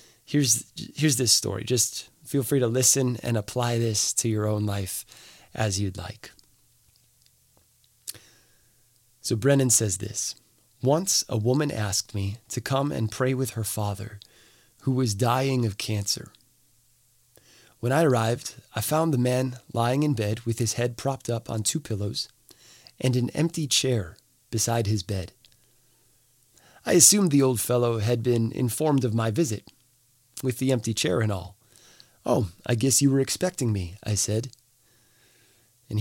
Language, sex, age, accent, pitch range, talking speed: English, male, 30-49, American, 115-130 Hz, 155 wpm